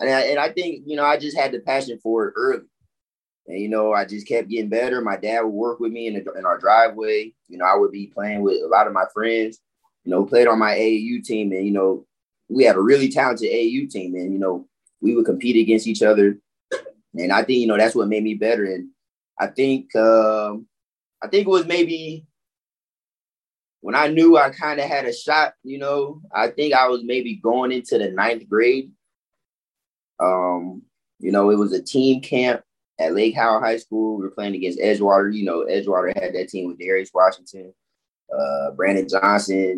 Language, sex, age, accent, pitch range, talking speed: English, male, 20-39, American, 100-135 Hz, 215 wpm